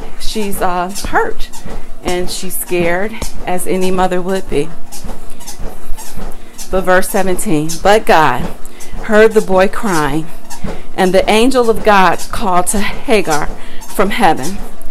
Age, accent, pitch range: 40-59, American, 170-215 Hz